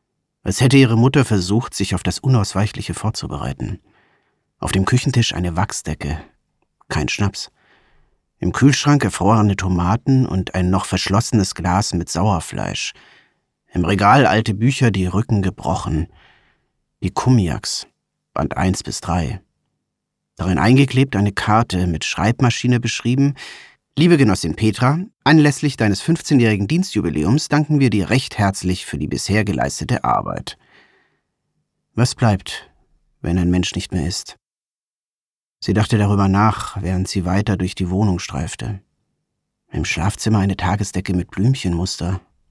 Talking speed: 125 wpm